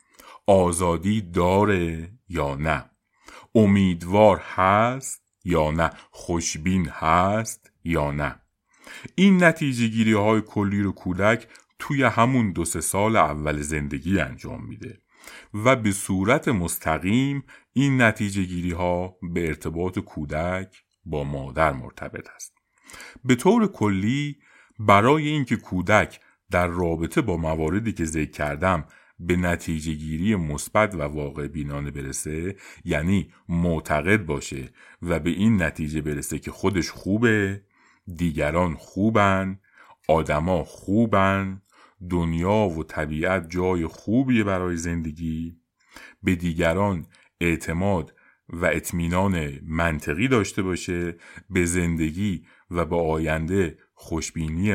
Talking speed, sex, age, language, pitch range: 110 wpm, male, 50-69, Persian, 80-105 Hz